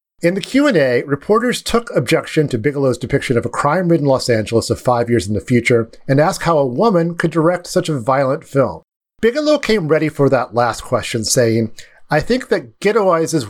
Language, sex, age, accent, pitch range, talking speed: English, male, 40-59, American, 120-180 Hz, 200 wpm